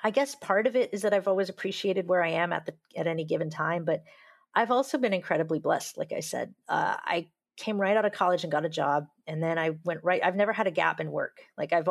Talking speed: 265 wpm